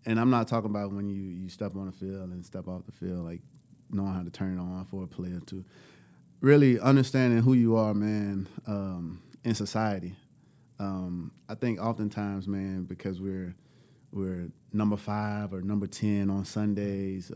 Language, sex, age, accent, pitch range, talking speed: English, male, 30-49, American, 95-110 Hz, 180 wpm